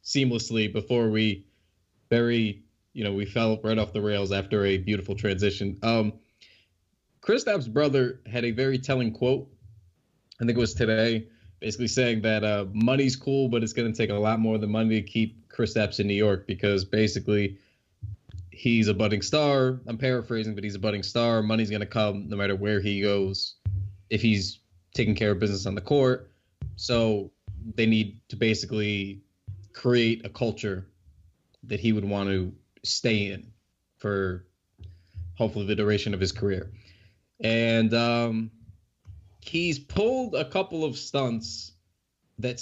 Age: 20-39